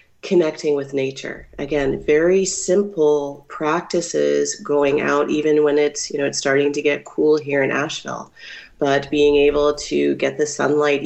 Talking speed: 155 wpm